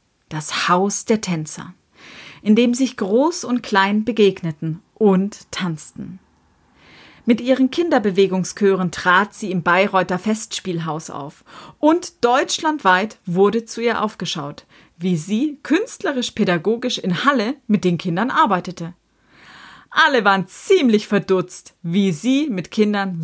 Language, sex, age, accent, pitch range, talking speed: German, female, 30-49, German, 175-230 Hz, 115 wpm